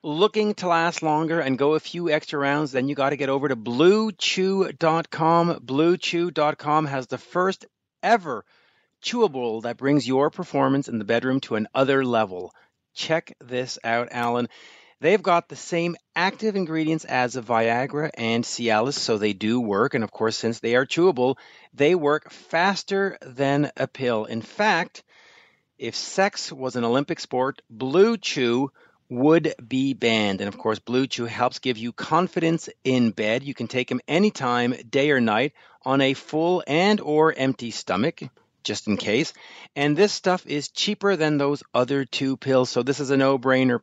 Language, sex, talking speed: English, male, 165 wpm